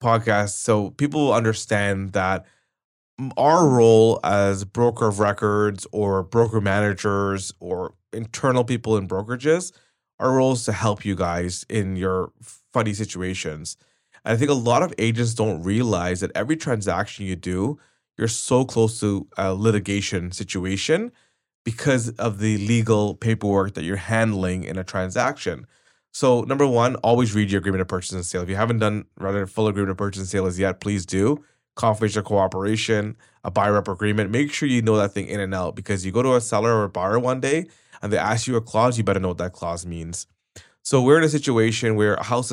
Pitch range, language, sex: 95-115 Hz, English, male